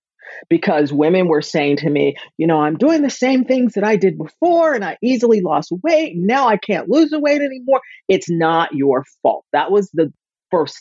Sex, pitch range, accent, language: female, 150-195 Hz, American, English